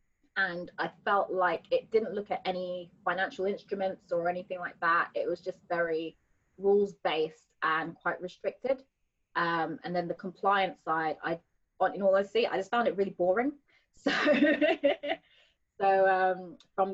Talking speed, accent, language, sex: 165 wpm, British, English, female